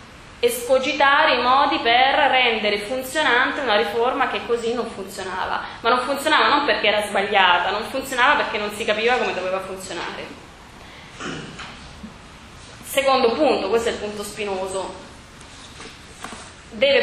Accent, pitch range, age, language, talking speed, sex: native, 195-235 Hz, 20-39, Italian, 125 wpm, female